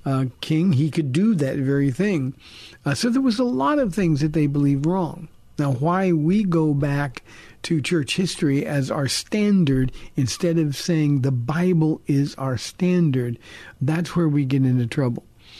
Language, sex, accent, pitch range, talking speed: English, male, American, 135-170 Hz, 175 wpm